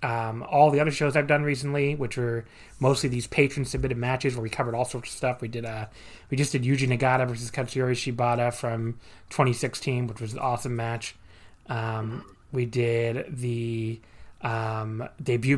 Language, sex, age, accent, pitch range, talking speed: English, male, 30-49, American, 115-135 Hz, 175 wpm